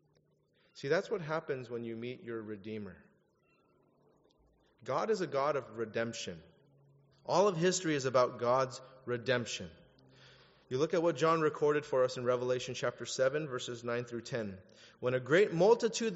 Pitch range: 120-155 Hz